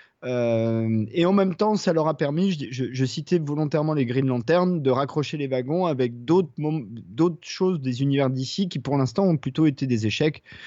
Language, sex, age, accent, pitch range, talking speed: French, male, 30-49, French, 110-140 Hz, 210 wpm